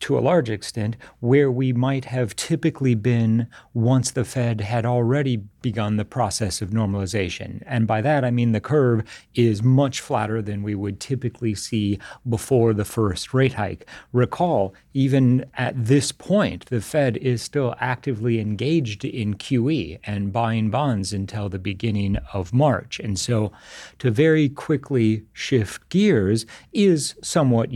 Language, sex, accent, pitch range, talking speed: English, male, American, 110-140 Hz, 150 wpm